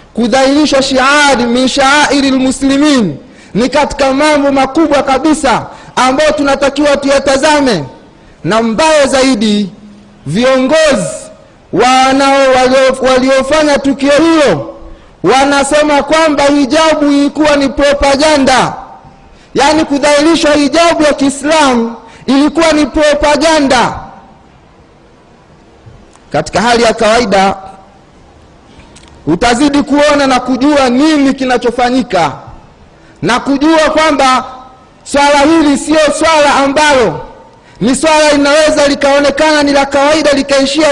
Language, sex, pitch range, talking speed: Swahili, male, 245-295 Hz, 90 wpm